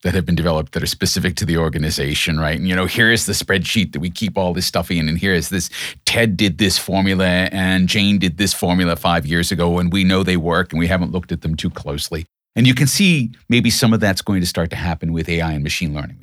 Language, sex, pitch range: English, male, 85-105 Hz